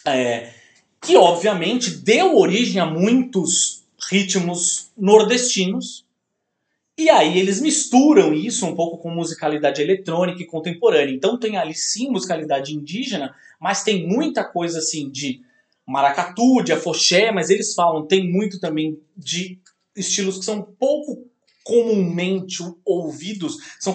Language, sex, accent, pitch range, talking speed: Portuguese, male, Brazilian, 160-205 Hz, 130 wpm